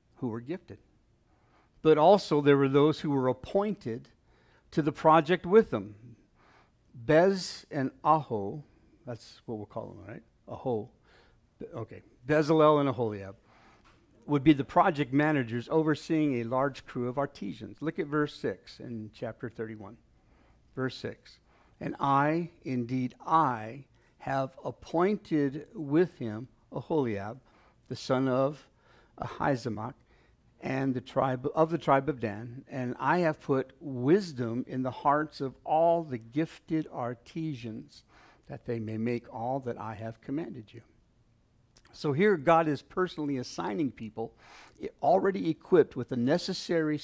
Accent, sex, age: American, male, 60-79